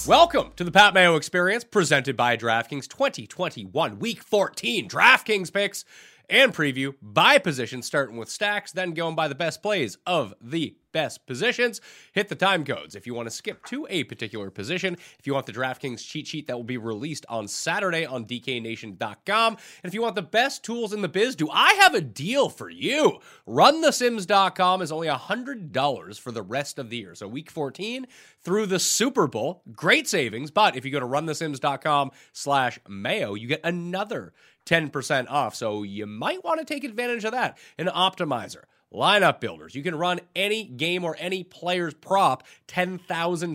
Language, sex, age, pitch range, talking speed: English, male, 30-49, 135-200 Hz, 180 wpm